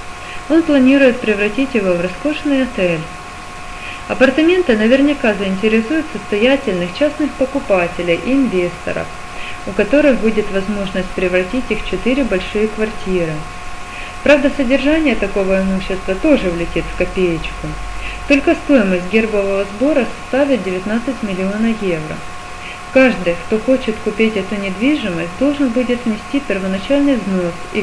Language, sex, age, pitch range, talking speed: Russian, female, 30-49, 175-260 Hz, 115 wpm